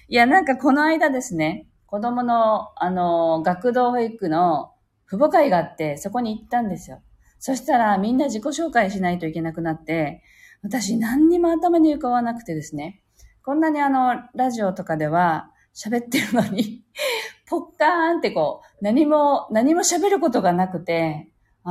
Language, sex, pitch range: Japanese, female, 165-260 Hz